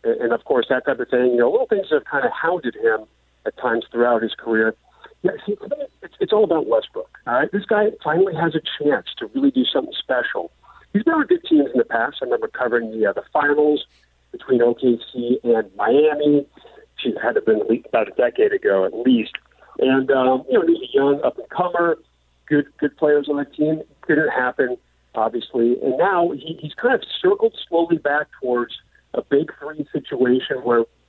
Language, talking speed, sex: English, 200 wpm, male